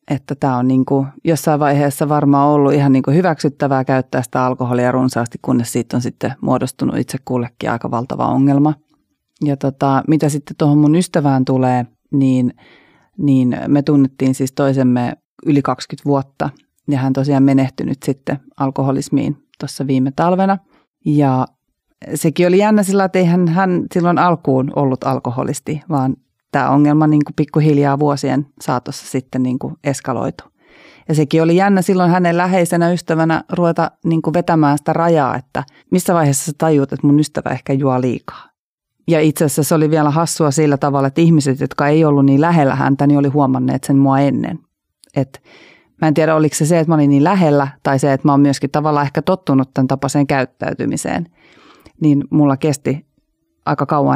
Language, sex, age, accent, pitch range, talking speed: Finnish, female, 30-49, native, 135-160 Hz, 160 wpm